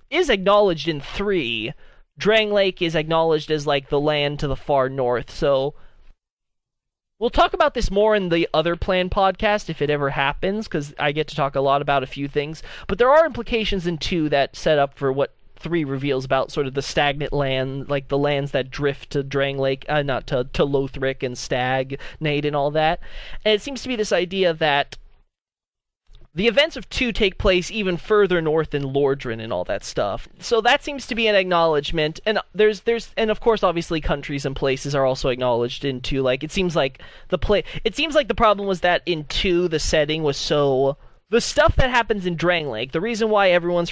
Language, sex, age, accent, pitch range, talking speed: English, male, 20-39, American, 140-195 Hz, 210 wpm